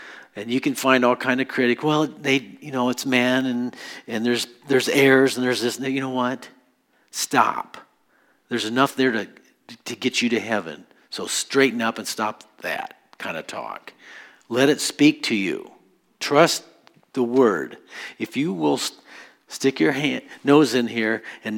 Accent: American